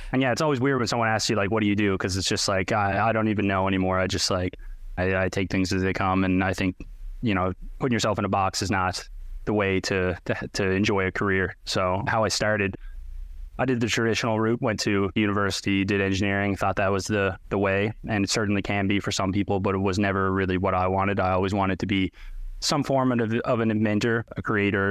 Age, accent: 20-39, American